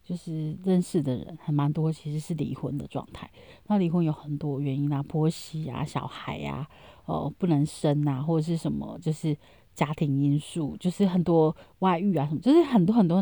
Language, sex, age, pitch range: Chinese, female, 30-49, 150-195 Hz